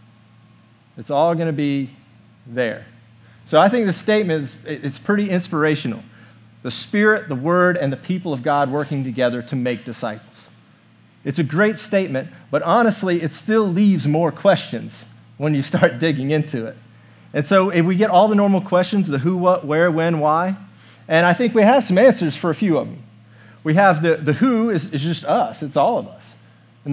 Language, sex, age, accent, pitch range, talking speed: English, male, 40-59, American, 130-190 Hz, 195 wpm